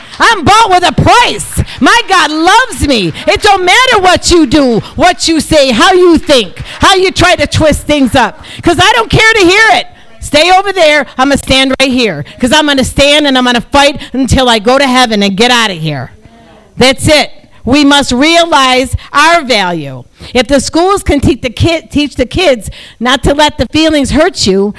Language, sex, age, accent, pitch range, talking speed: English, female, 50-69, American, 175-290 Hz, 210 wpm